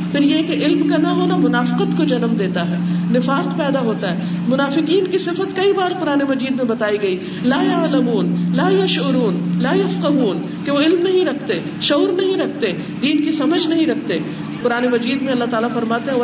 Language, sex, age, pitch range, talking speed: Urdu, female, 50-69, 190-280 Hz, 190 wpm